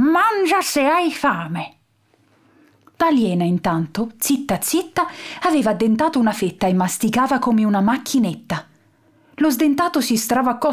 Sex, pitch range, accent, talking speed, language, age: female, 185-250 Hz, native, 115 wpm, Italian, 30-49